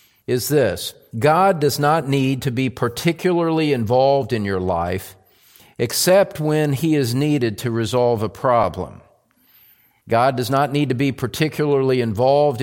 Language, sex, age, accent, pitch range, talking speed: English, male, 50-69, American, 115-140 Hz, 145 wpm